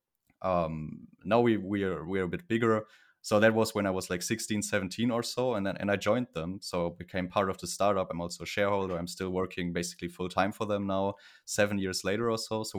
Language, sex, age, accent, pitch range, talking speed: English, male, 20-39, German, 90-105 Hz, 235 wpm